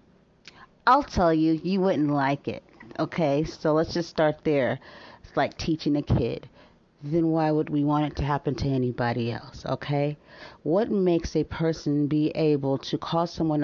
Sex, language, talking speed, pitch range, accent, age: female, English, 170 wpm, 135-170 Hz, American, 40-59